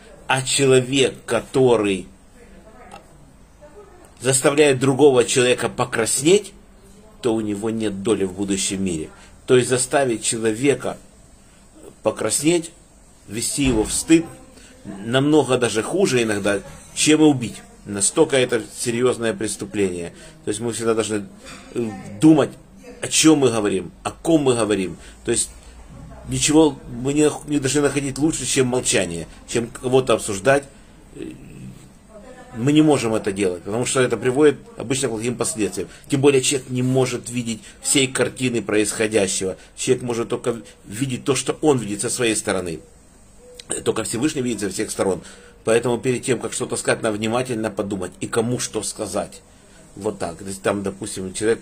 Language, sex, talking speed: Russian, male, 140 wpm